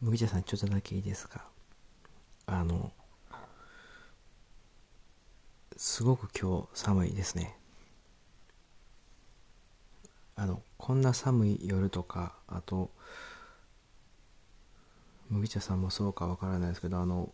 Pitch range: 90-110 Hz